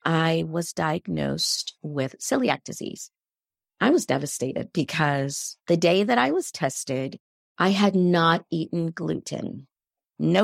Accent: American